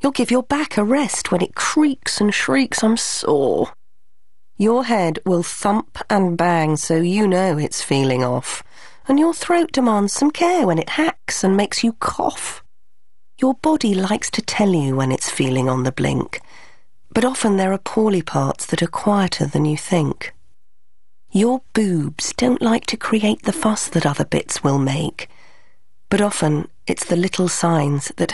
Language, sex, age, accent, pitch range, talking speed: English, female, 40-59, British, 150-220 Hz, 175 wpm